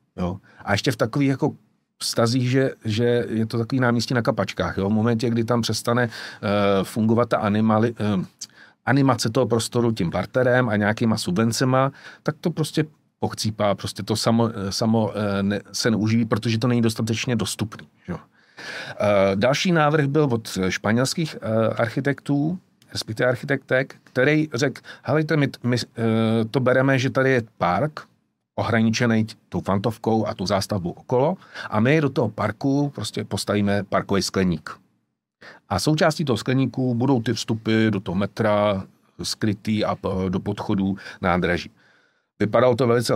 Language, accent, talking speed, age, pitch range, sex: Czech, native, 150 wpm, 50-69, 100-125 Hz, male